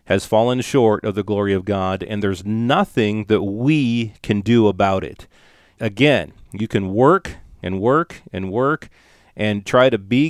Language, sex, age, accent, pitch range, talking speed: English, male, 40-59, American, 100-140 Hz, 170 wpm